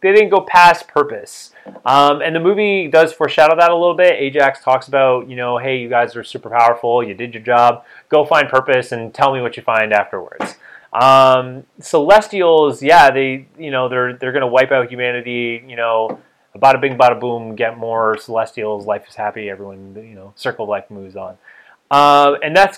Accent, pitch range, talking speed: American, 115-150 Hz, 200 wpm